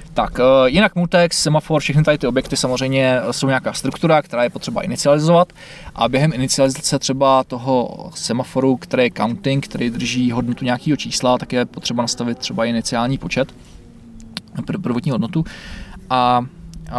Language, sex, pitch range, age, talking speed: Czech, male, 120-150 Hz, 20-39, 140 wpm